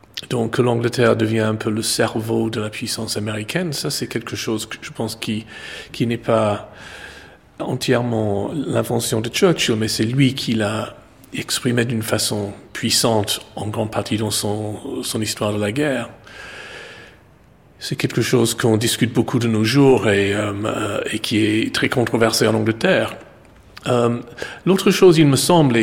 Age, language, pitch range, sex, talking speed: 40-59, French, 110-130 Hz, male, 165 wpm